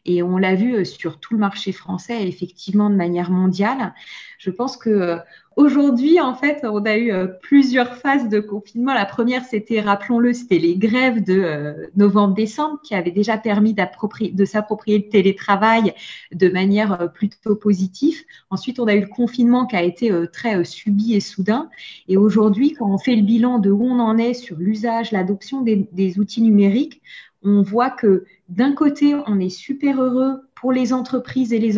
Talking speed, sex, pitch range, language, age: 175 wpm, female, 200-240 Hz, French, 30-49